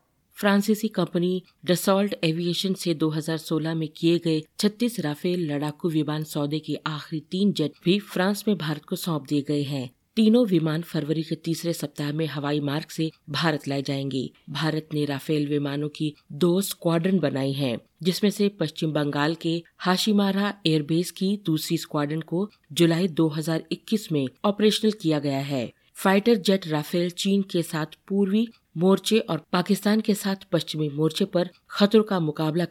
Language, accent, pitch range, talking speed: Hindi, native, 155-185 Hz, 155 wpm